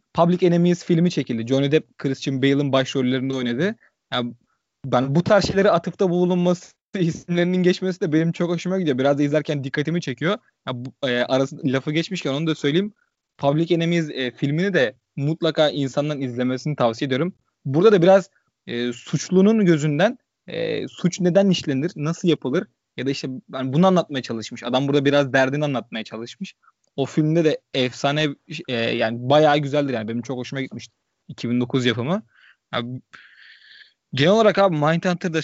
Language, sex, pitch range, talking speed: Turkish, male, 135-180 Hz, 155 wpm